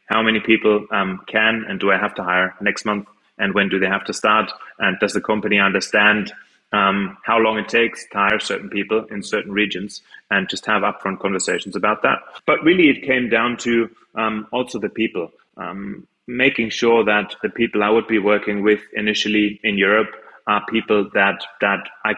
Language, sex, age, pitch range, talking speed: English, male, 20-39, 100-110 Hz, 200 wpm